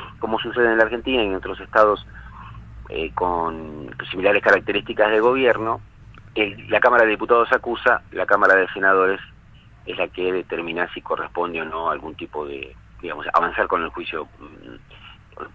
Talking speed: 160 wpm